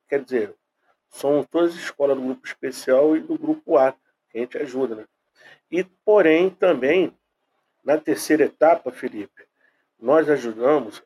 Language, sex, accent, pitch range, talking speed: English, male, Brazilian, 120-155 Hz, 145 wpm